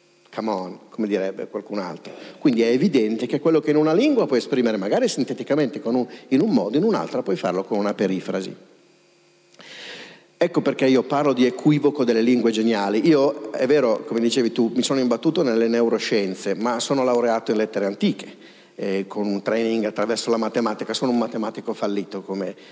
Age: 50-69